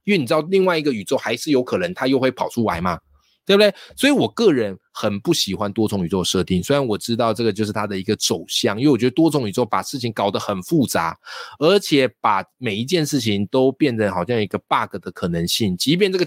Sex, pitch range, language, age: male, 105-160 Hz, Chinese, 20-39